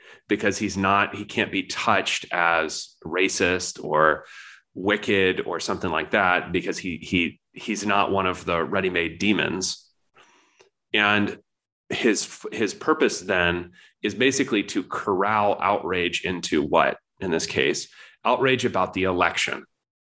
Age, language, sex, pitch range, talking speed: 30-49, English, male, 95-120 Hz, 130 wpm